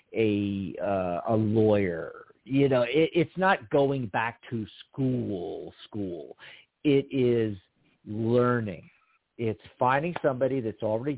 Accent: American